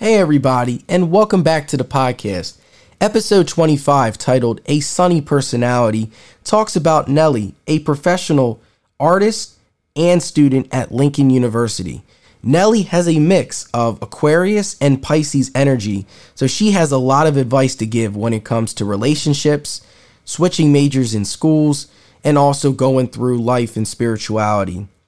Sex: male